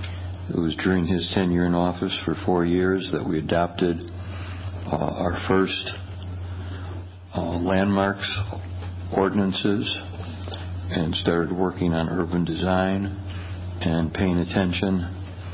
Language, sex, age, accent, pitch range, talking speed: English, male, 60-79, American, 90-95 Hz, 110 wpm